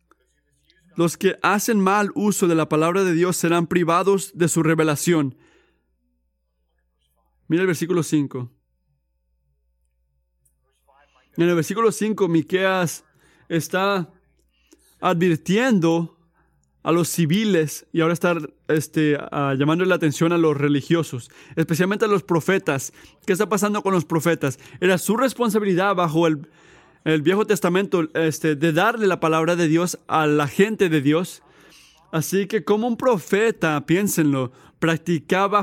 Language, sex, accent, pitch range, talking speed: Spanish, male, Mexican, 145-185 Hz, 130 wpm